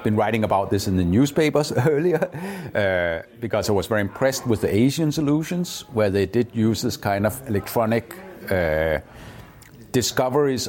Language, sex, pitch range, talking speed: English, male, 100-130 Hz, 155 wpm